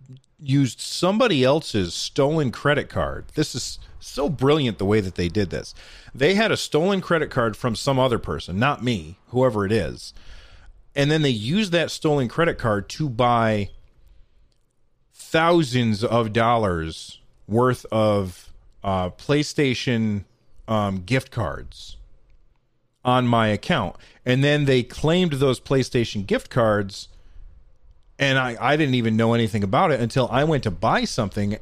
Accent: American